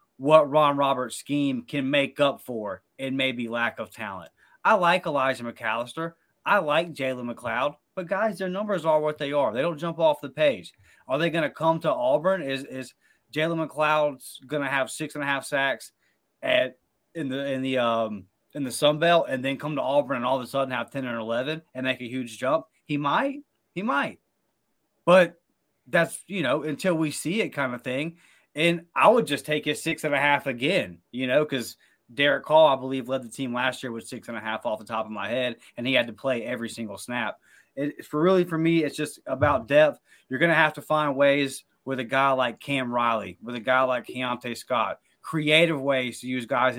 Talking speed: 215 wpm